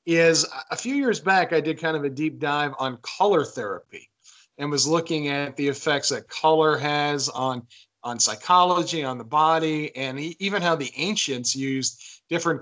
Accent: American